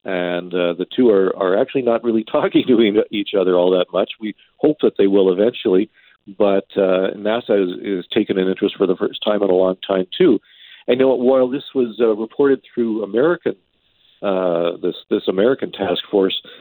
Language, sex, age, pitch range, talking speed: English, male, 50-69, 90-115 Hz, 200 wpm